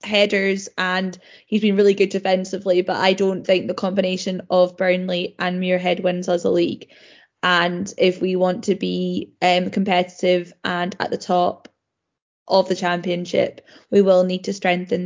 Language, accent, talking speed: English, British, 165 wpm